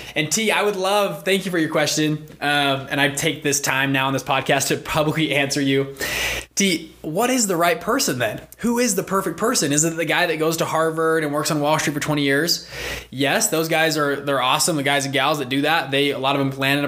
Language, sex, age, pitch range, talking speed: English, male, 20-39, 135-160 Hz, 255 wpm